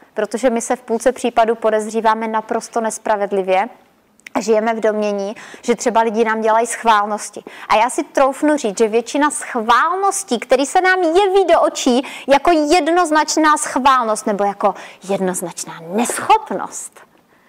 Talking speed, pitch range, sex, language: 135 wpm, 210-290 Hz, female, Czech